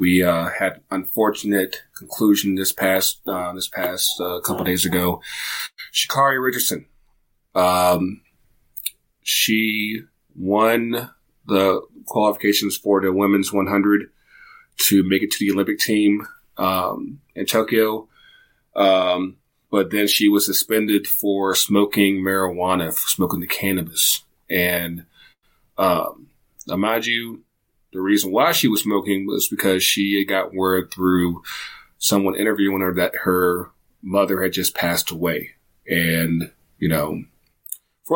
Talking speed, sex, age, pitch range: 125 wpm, male, 30-49, 90-105 Hz